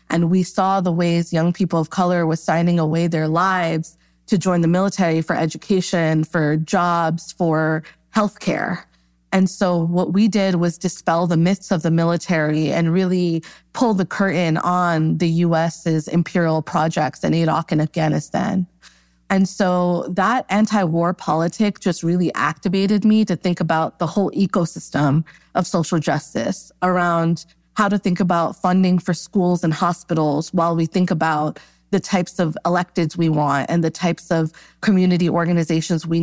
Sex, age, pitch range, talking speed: female, 20-39, 165-185 Hz, 160 wpm